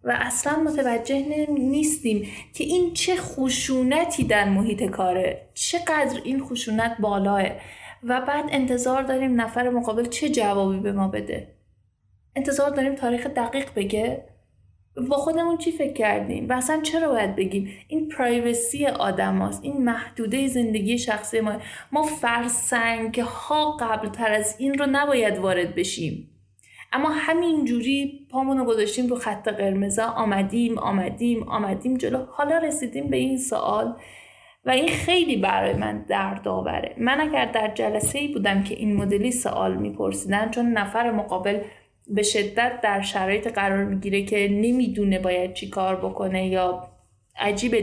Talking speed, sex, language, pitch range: 135 wpm, female, Persian, 200-260 Hz